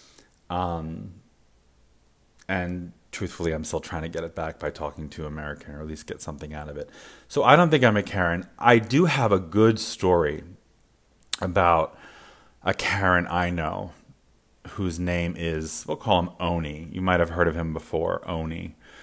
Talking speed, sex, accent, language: 175 wpm, male, American, English